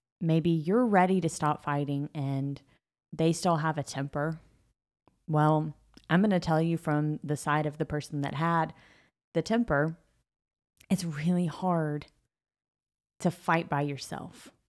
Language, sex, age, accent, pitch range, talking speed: English, female, 20-39, American, 145-170 Hz, 145 wpm